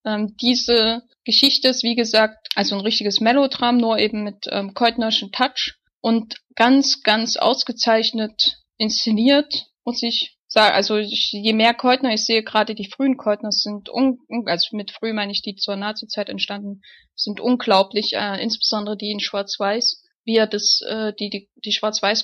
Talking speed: 155 wpm